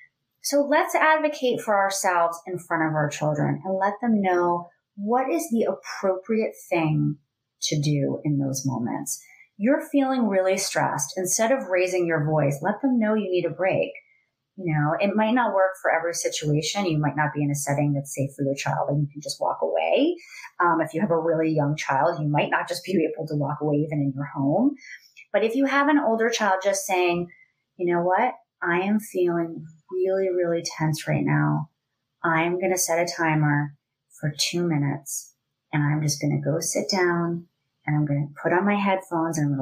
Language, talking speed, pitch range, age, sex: English, 205 wpm, 150-190 Hz, 30-49, female